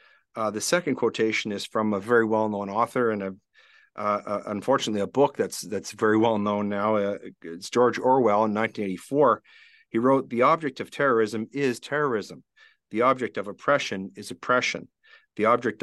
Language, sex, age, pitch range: English, male, 50-69, 105-125 Hz